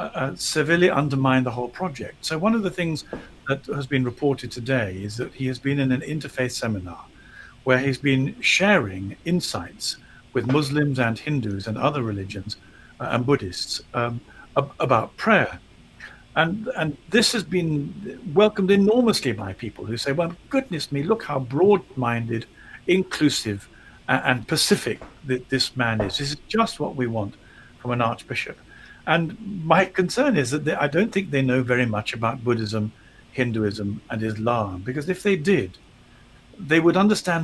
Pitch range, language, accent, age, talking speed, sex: 120-160 Hz, English, British, 50-69, 165 wpm, male